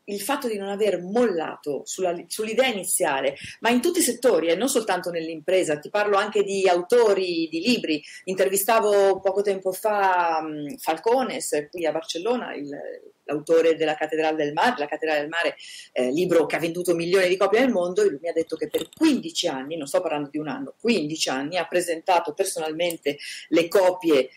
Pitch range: 160-220 Hz